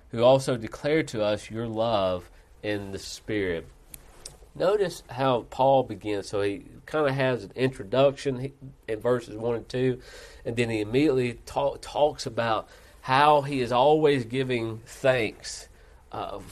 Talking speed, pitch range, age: 145 wpm, 110-135 Hz, 40-59